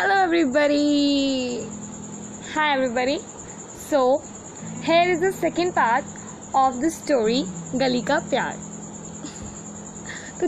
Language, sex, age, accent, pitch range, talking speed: Hindi, female, 20-39, native, 220-325 Hz, 95 wpm